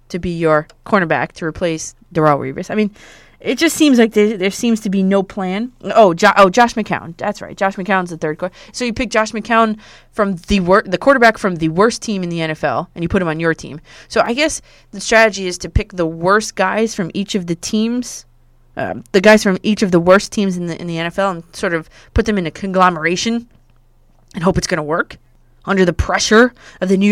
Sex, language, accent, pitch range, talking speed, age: female, English, American, 165-210 Hz, 240 wpm, 20-39